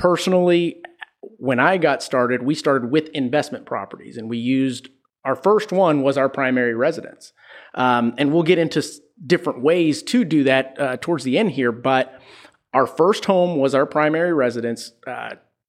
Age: 30-49